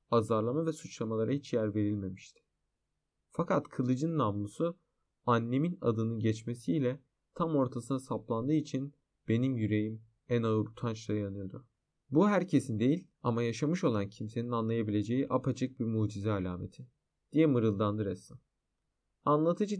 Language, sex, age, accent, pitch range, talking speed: Turkish, male, 40-59, native, 110-145 Hz, 115 wpm